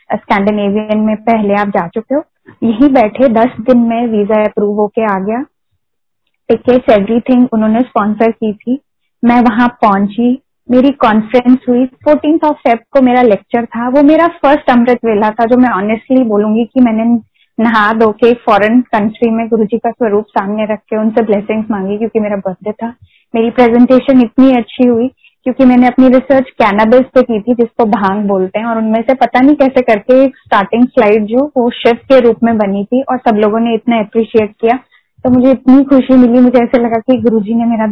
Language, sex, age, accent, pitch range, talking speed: Hindi, female, 20-39, native, 215-255 Hz, 190 wpm